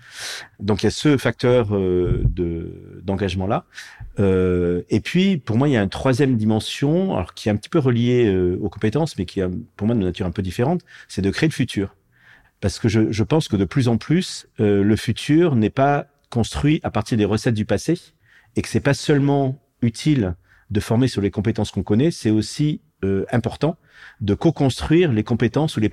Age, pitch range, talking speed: 40-59, 100-135 Hz, 210 wpm